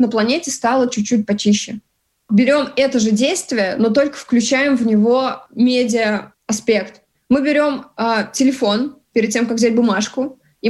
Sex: female